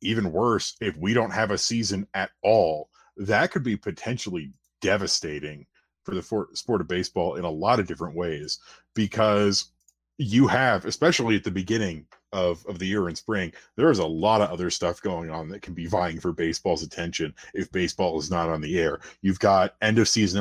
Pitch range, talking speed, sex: 90-115 Hz, 190 wpm, male